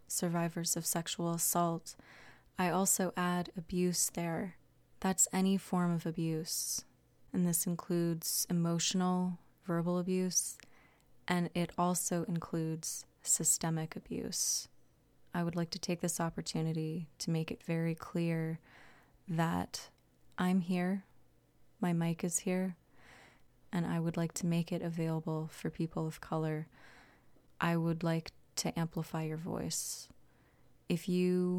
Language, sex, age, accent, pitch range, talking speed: English, female, 20-39, American, 165-180 Hz, 125 wpm